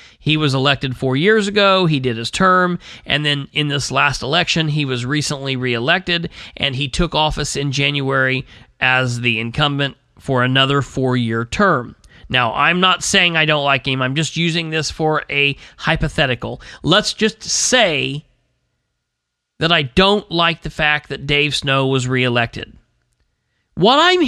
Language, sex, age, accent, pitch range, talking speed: English, male, 40-59, American, 140-215 Hz, 160 wpm